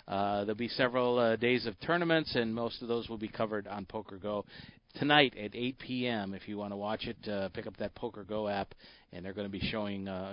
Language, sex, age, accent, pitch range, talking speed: English, male, 40-59, American, 100-145 Hz, 240 wpm